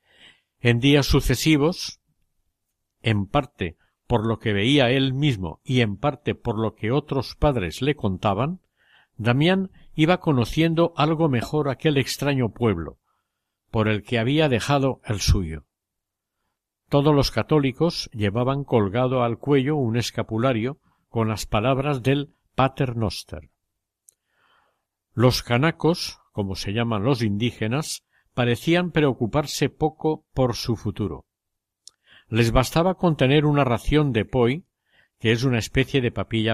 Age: 60-79